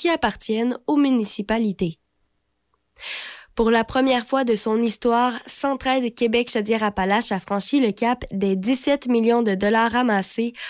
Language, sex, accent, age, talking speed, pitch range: French, female, Canadian, 20-39, 135 wpm, 200-245 Hz